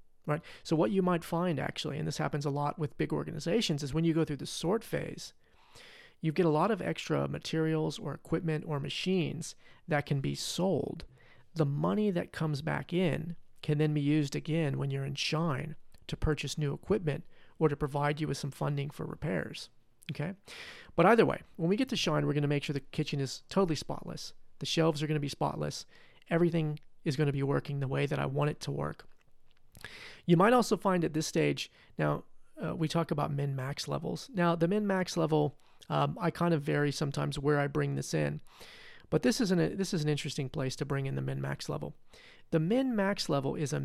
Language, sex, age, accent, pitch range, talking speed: English, male, 30-49, American, 145-170 Hz, 210 wpm